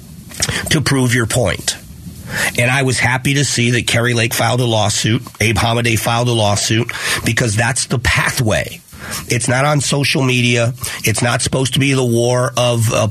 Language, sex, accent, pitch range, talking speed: English, male, American, 110-125 Hz, 180 wpm